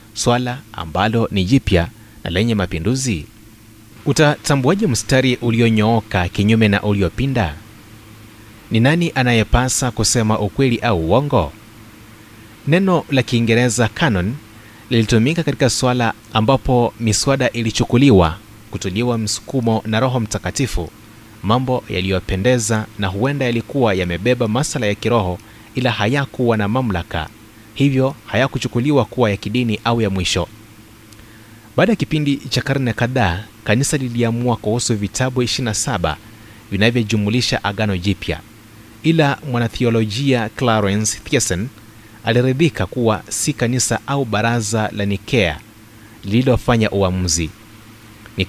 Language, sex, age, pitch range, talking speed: Swahili, male, 30-49, 105-125 Hz, 105 wpm